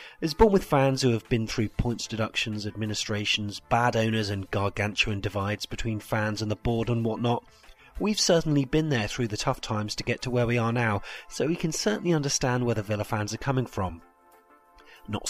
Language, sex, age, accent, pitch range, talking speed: English, male, 40-59, British, 110-145 Hz, 200 wpm